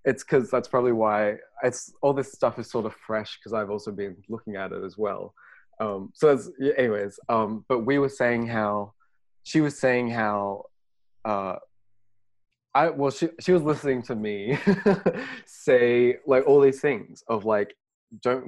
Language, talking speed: English, 170 wpm